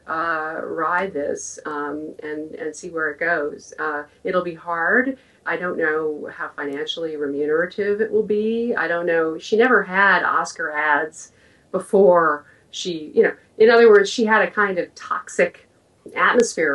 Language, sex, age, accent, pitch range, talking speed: English, female, 40-59, American, 150-205 Hz, 160 wpm